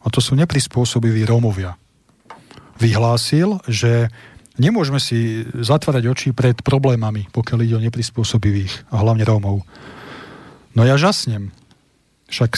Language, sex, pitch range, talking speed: Slovak, male, 115-135 Hz, 115 wpm